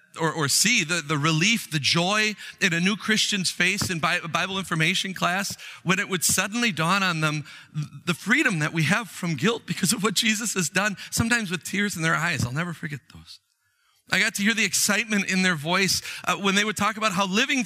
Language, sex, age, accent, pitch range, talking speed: English, male, 40-59, American, 170-220 Hz, 225 wpm